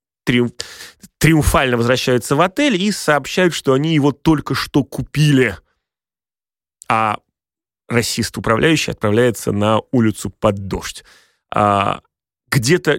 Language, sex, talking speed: Russian, male, 90 wpm